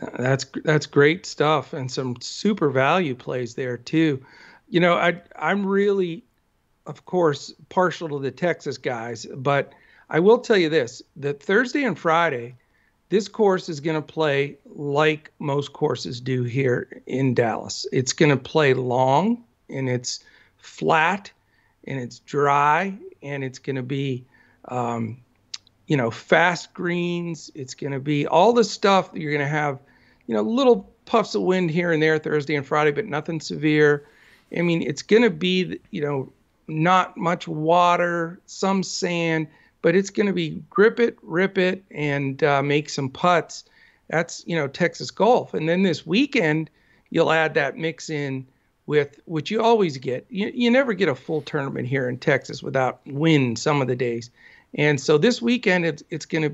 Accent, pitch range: American, 140-180 Hz